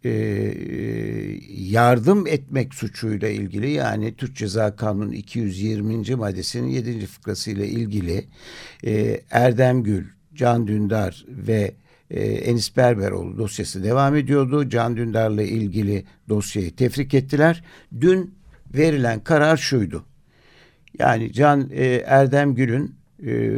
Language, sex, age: Turkish, male, 60-79